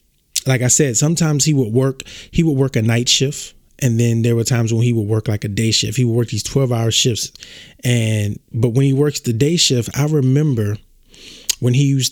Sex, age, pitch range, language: male, 20-39, 110-130 Hz, English